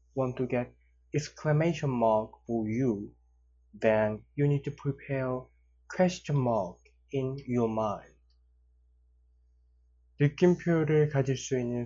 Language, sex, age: Korean, male, 20-39